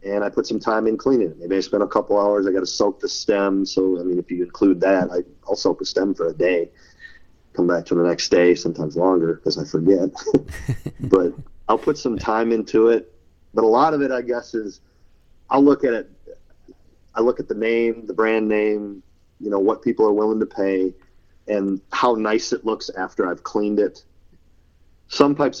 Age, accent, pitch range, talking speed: 30-49, American, 85-110 Hz, 215 wpm